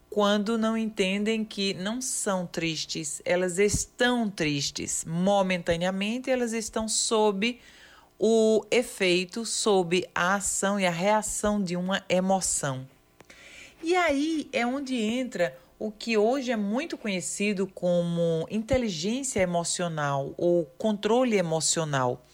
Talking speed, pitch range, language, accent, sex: 115 wpm, 180-255 Hz, Portuguese, Brazilian, female